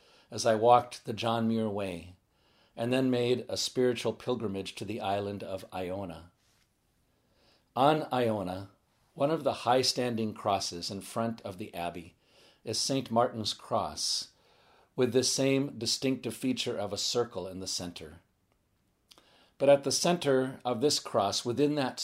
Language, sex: English, male